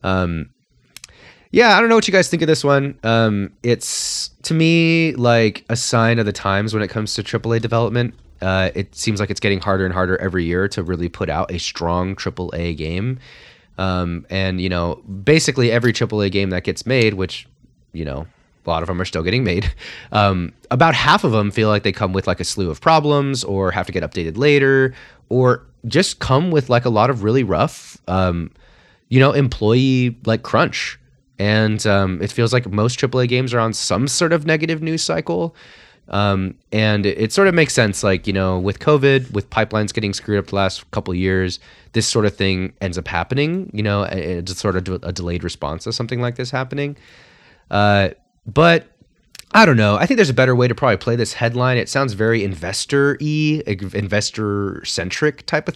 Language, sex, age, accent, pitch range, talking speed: English, male, 30-49, American, 95-130 Hz, 200 wpm